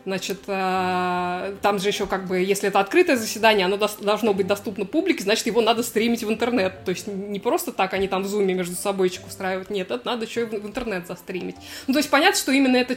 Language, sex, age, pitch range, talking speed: Russian, female, 20-39, 185-230 Hz, 220 wpm